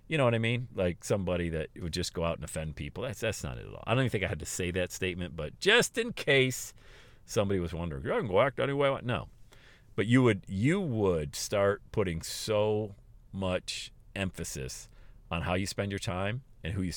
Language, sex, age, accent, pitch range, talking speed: English, male, 40-59, American, 90-125 Hz, 225 wpm